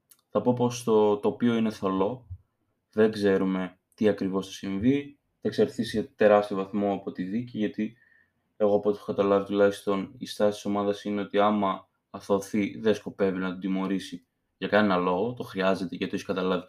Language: Greek